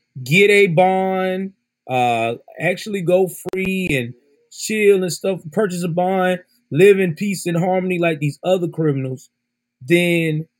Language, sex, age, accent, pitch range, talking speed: English, male, 30-49, American, 150-200 Hz, 135 wpm